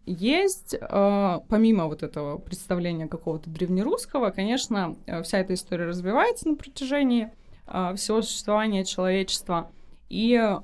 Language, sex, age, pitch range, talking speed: Russian, female, 20-39, 180-275 Hz, 100 wpm